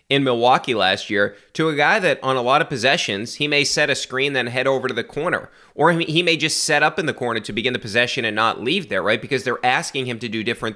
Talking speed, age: 275 wpm, 30-49